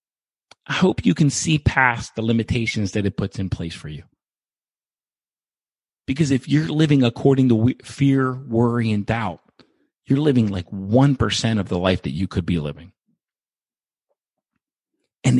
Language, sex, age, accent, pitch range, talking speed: English, male, 40-59, American, 95-135 Hz, 150 wpm